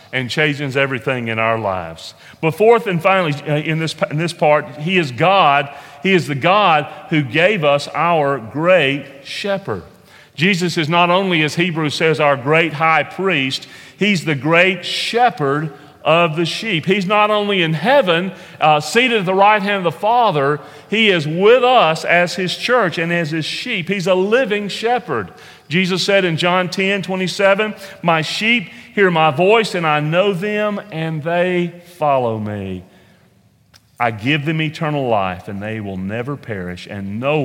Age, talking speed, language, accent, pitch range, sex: 40-59, 170 wpm, English, American, 115-180 Hz, male